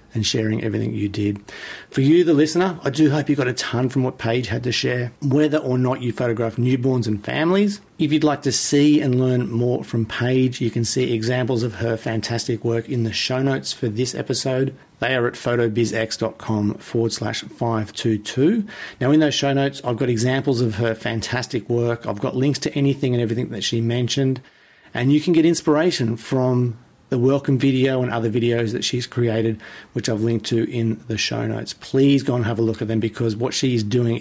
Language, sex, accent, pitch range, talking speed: English, male, Australian, 115-140 Hz, 210 wpm